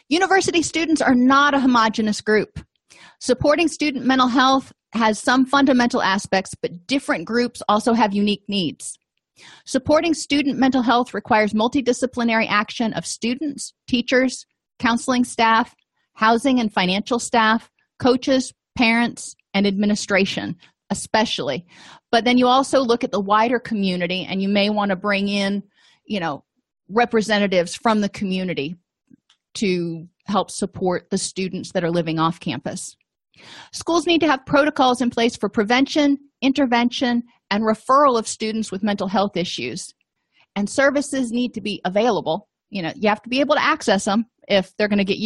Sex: female